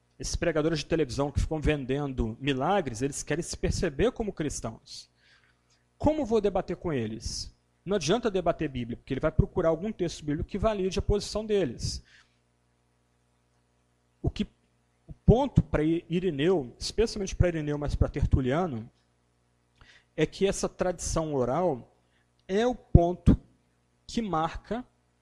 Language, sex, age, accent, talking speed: Portuguese, male, 40-59, Brazilian, 135 wpm